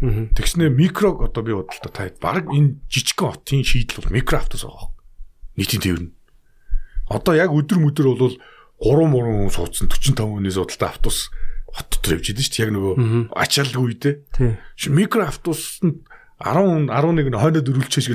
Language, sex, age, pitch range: Korean, male, 40-59, 105-145 Hz